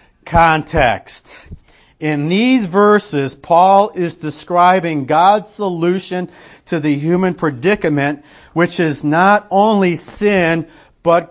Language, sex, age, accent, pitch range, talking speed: English, male, 40-59, American, 150-185 Hz, 100 wpm